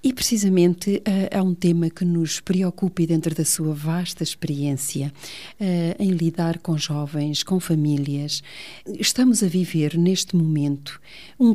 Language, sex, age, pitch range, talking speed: Portuguese, female, 40-59, 170-205 Hz, 145 wpm